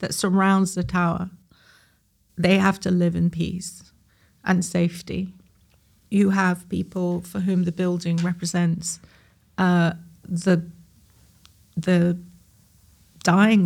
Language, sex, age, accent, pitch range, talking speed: English, female, 40-59, British, 165-180 Hz, 105 wpm